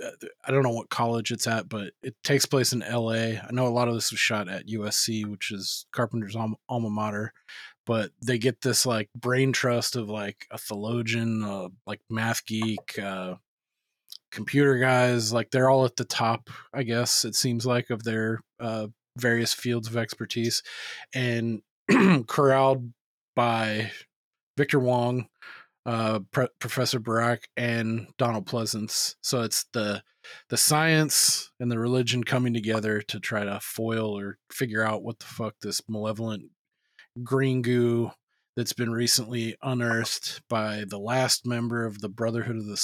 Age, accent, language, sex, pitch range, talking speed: 20-39, American, English, male, 110-125 Hz, 155 wpm